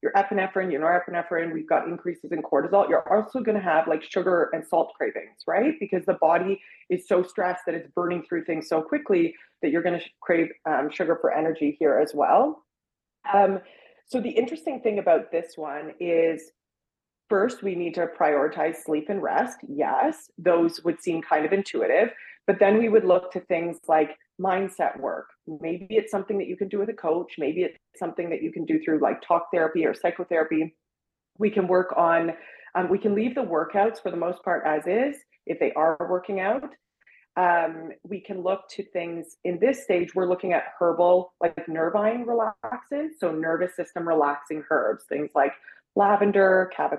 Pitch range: 165-200 Hz